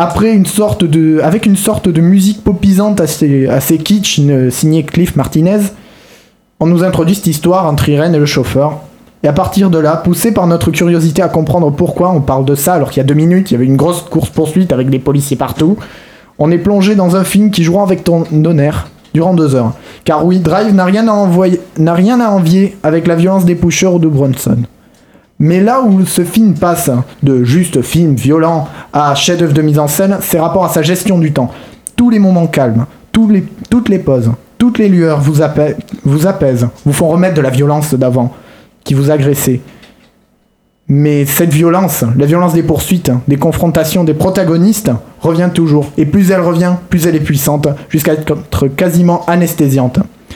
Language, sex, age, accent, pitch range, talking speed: French, male, 20-39, French, 145-185 Hz, 195 wpm